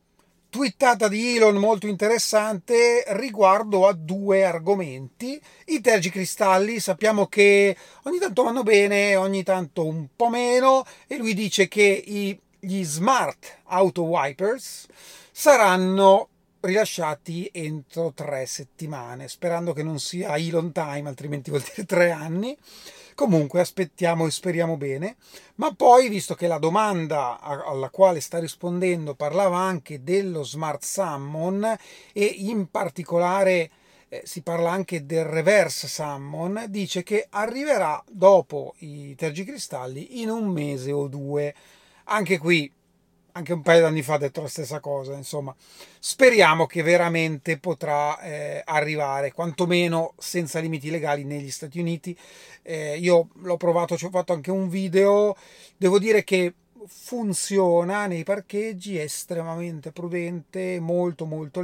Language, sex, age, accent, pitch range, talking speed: Italian, male, 30-49, native, 160-200 Hz, 130 wpm